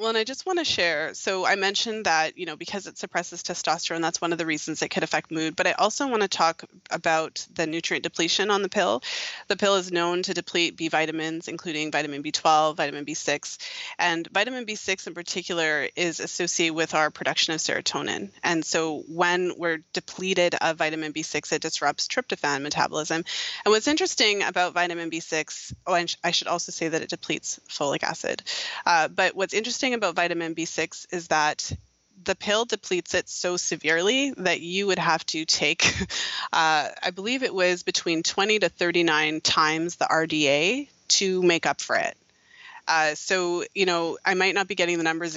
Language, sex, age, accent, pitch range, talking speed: English, female, 20-39, American, 160-190 Hz, 185 wpm